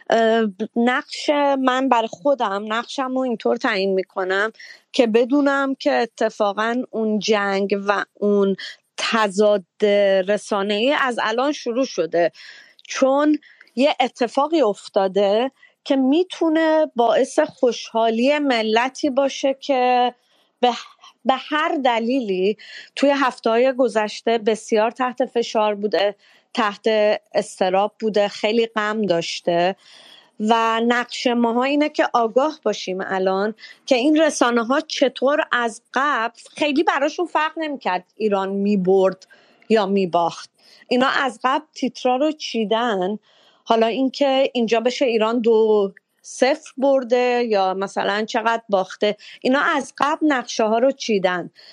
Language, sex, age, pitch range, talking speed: Persian, female, 30-49, 210-275 Hz, 115 wpm